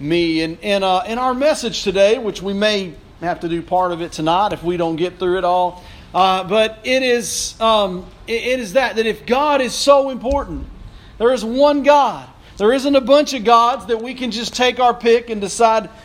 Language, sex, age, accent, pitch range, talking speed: English, male, 40-59, American, 215-275 Hz, 215 wpm